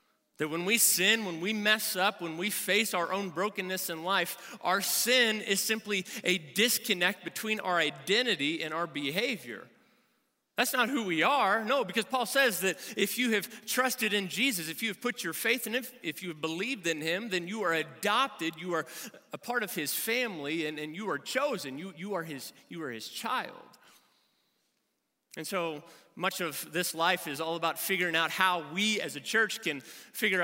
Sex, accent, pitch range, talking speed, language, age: male, American, 165-220 Hz, 190 wpm, English, 30-49